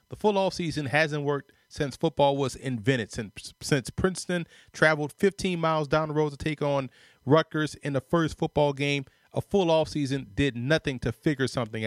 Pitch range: 120-150 Hz